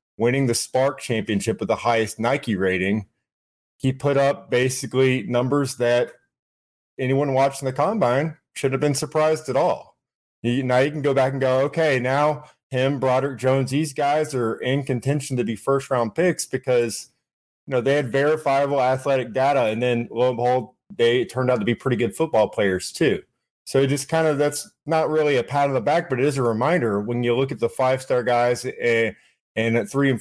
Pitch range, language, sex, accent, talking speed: 115-135 Hz, English, male, American, 195 wpm